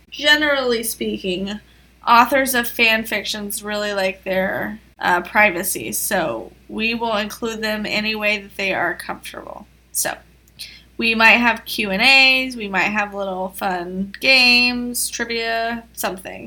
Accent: American